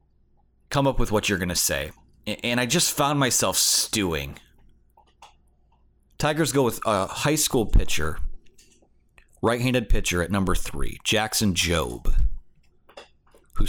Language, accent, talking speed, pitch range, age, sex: English, American, 125 wpm, 85-120 Hz, 30-49, male